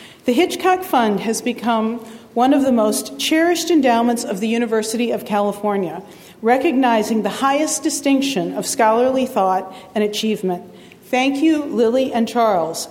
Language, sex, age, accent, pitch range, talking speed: English, female, 40-59, American, 215-270 Hz, 140 wpm